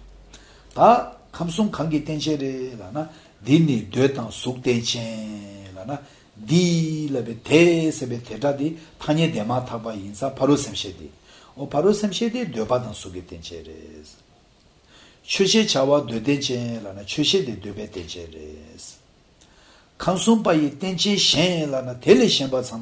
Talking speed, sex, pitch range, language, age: 100 wpm, male, 105-160 Hz, English, 60-79